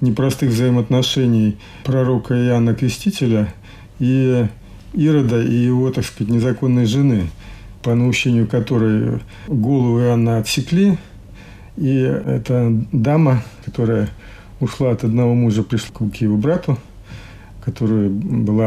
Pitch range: 110-135 Hz